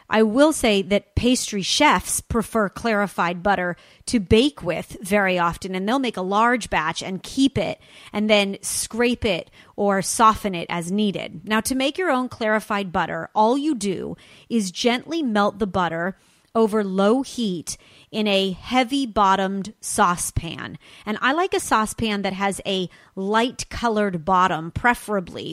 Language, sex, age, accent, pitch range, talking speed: English, female, 30-49, American, 190-240 Hz, 155 wpm